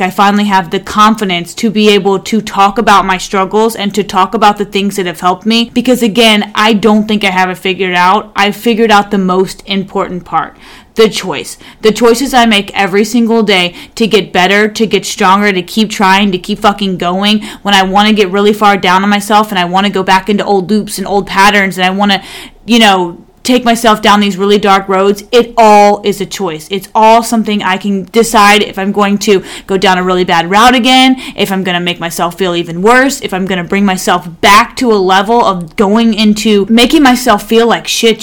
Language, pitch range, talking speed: English, 190-215 Hz, 230 wpm